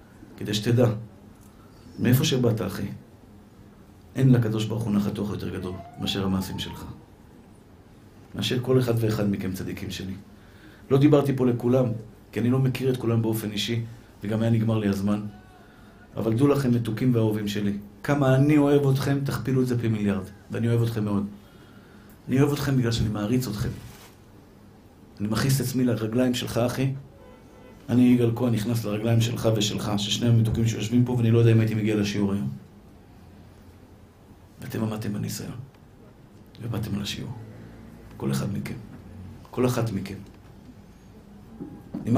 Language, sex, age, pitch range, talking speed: Hebrew, male, 50-69, 100-125 Hz, 145 wpm